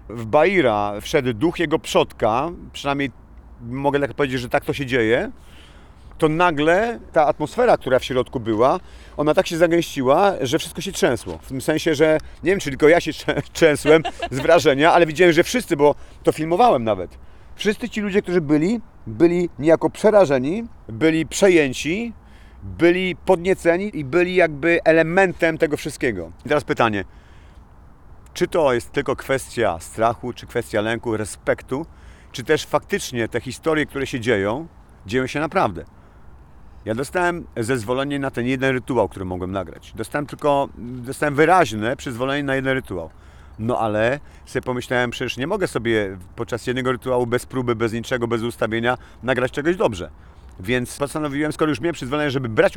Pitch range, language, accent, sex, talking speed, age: 115-160 Hz, Polish, native, male, 160 wpm, 40-59